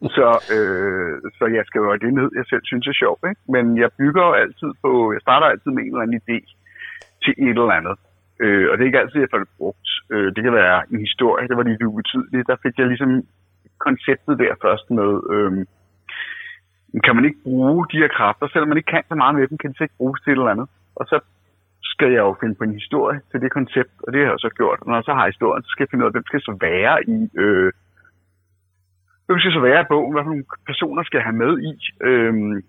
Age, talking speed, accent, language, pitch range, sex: 60-79, 250 wpm, native, Danish, 100-145 Hz, male